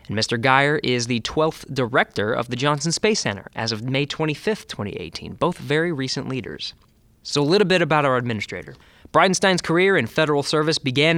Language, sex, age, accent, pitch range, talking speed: English, male, 20-39, American, 125-160 Hz, 180 wpm